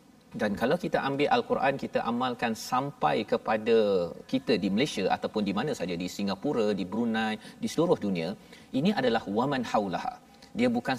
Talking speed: 165 wpm